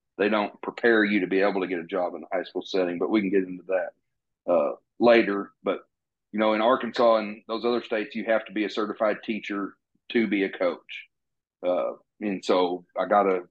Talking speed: 220 wpm